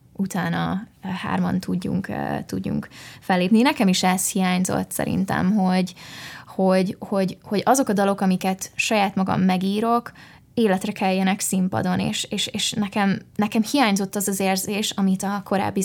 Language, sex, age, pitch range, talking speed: Hungarian, female, 20-39, 185-210 Hz, 135 wpm